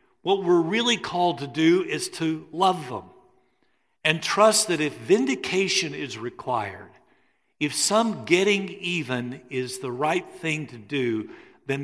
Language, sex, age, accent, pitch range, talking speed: English, male, 50-69, American, 120-160 Hz, 140 wpm